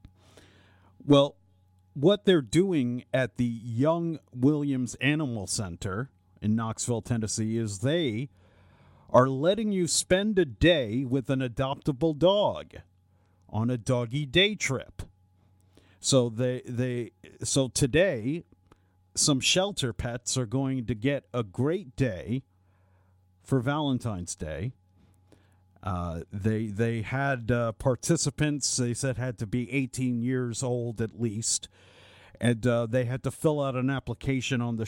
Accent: American